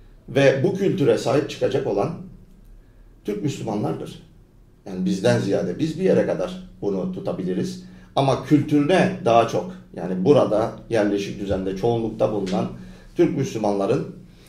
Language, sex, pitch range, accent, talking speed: Turkish, male, 100-170 Hz, native, 120 wpm